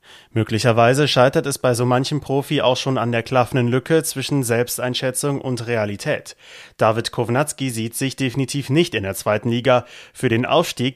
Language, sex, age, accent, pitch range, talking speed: German, male, 30-49, German, 115-140 Hz, 165 wpm